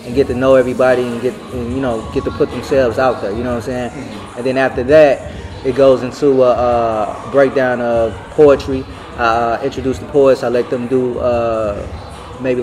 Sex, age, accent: male, 20-39, American